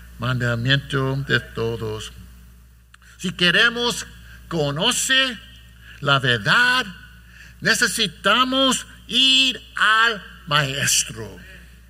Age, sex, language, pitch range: 60-79, male, English, 155-225 Hz